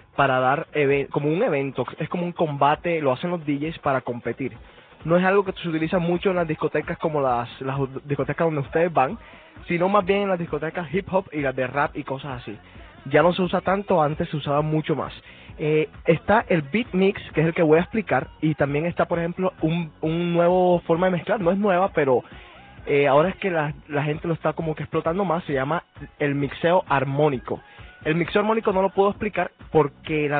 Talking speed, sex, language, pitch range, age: 220 wpm, male, Spanish, 145-175 Hz, 20-39